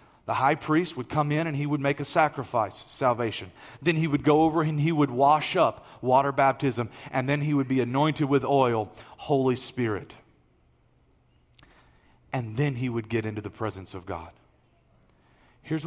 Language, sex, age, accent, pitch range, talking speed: English, male, 40-59, American, 125-170 Hz, 175 wpm